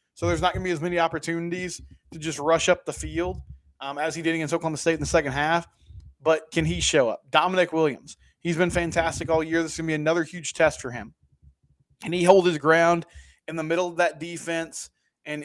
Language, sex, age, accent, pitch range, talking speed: English, male, 20-39, American, 150-170 Hz, 225 wpm